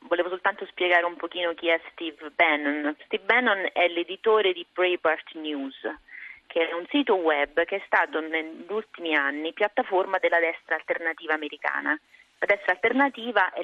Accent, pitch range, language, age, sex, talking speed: native, 160-210 Hz, Italian, 30-49, female, 160 wpm